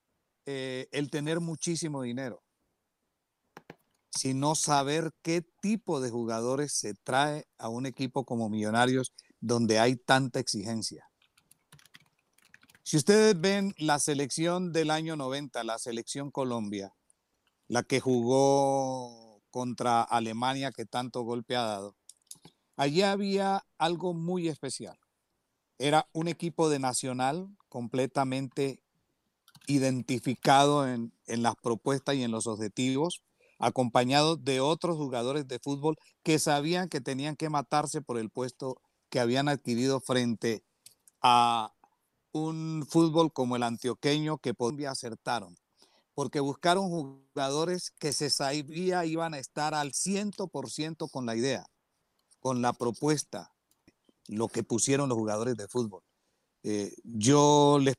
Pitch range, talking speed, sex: 120-155 Hz, 120 wpm, male